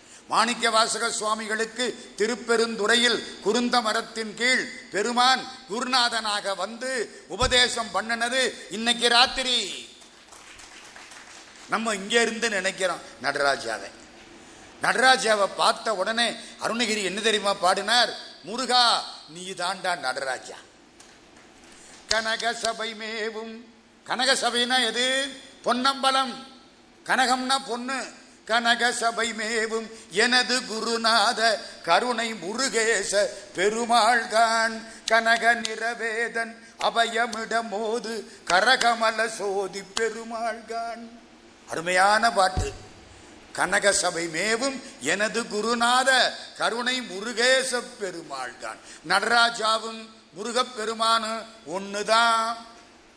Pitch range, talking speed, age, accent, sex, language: 215-240 Hz, 65 wpm, 50-69, native, male, Tamil